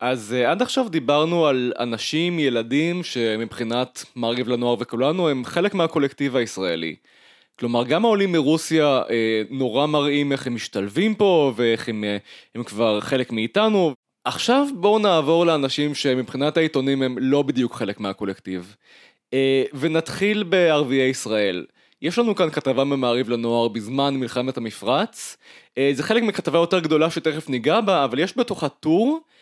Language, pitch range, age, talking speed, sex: Hebrew, 125-170 Hz, 20-39, 145 wpm, male